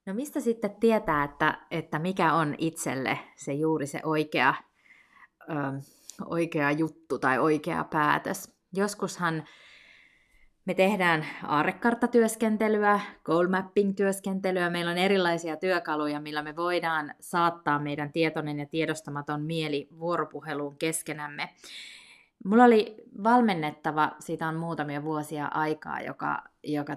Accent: native